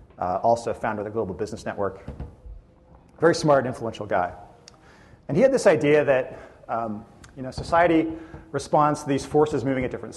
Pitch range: 105-140 Hz